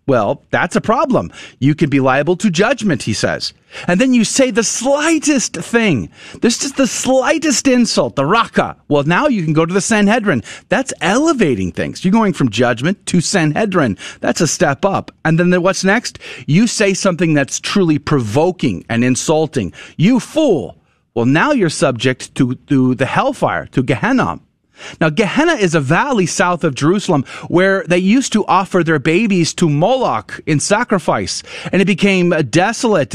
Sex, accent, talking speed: male, American, 170 wpm